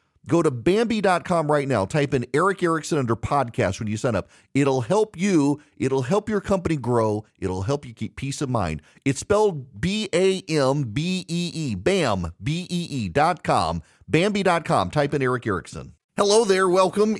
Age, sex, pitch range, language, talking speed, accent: 40-59, male, 110-170 Hz, English, 175 wpm, American